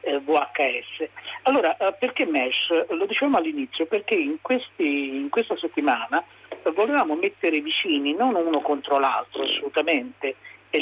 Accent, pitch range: native, 135-185 Hz